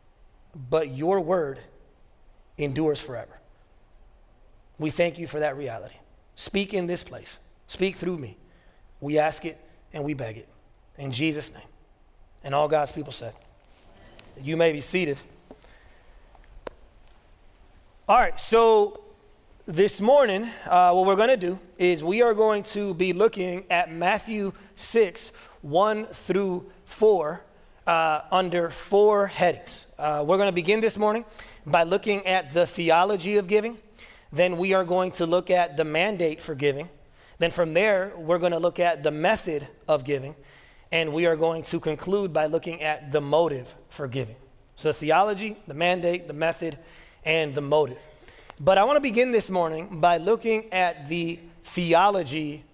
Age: 30-49